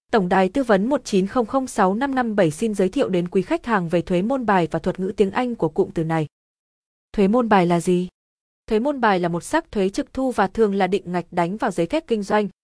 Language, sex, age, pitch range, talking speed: Vietnamese, female, 20-39, 180-230 Hz, 235 wpm